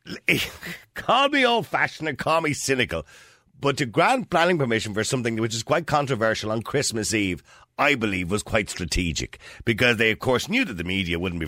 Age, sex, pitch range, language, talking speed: 50-69, male, 80-115 Hz, English, 190 wpm